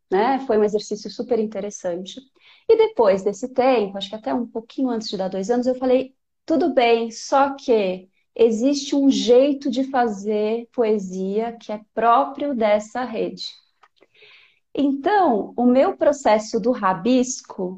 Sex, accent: female, Brazilian